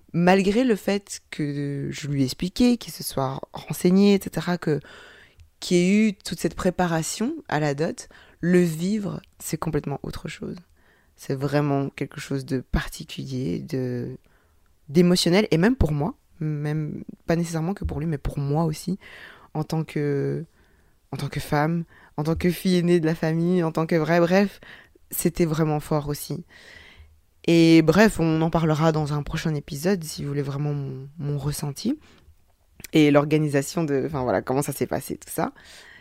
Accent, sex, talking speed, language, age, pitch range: French, female, 160 wpm, French, 20-39, 140-180 Hz